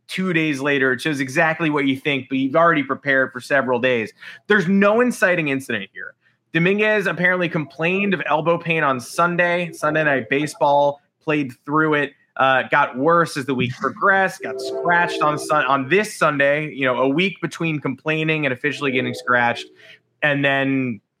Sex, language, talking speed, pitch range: male, English, 170 wpm, 130-170 Hz